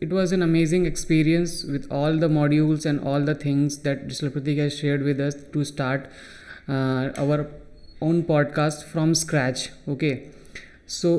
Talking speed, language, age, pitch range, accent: 160 wpm, English, 20-39, 145-175 Hz, Indian